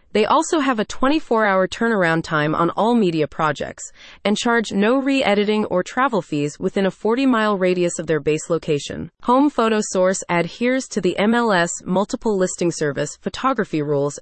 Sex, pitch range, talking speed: female, 170-225 Hz, 160 wpm